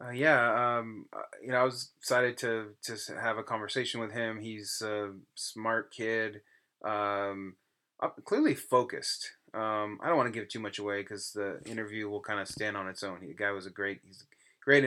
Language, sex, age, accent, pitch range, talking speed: English, male, 20-39, American, 105-130 Hz, 200 wpm